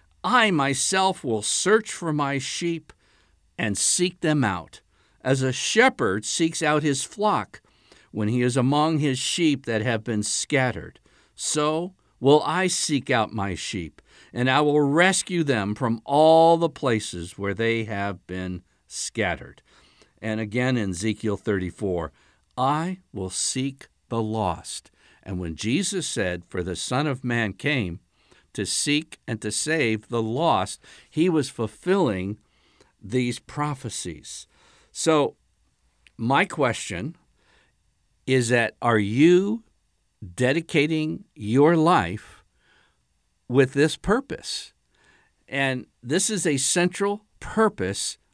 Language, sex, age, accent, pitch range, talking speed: English, male, 60-79, American, 105-160 Hz, 125 wpm